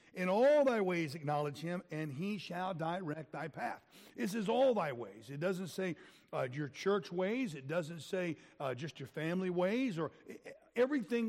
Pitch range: 150-205 Hz